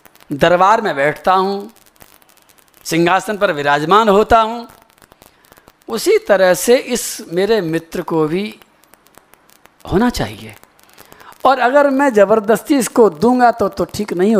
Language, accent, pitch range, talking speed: Hindi, native, 175-245 Hz, 120 wpm